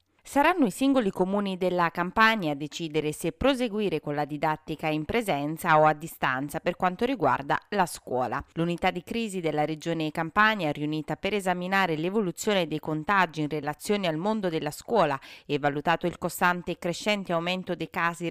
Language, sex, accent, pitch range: Italian, female, native, 160-215 Hz